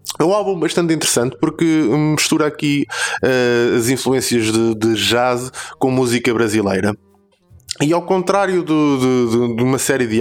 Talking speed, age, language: 155 wpm, 20-39, Portuguese